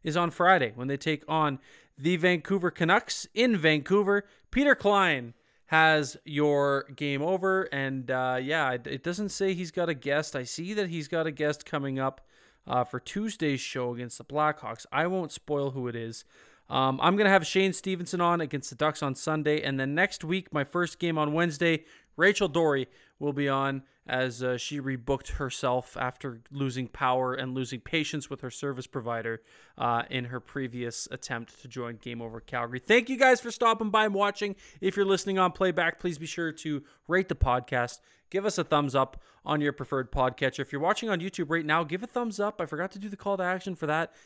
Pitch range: 130-185 Hz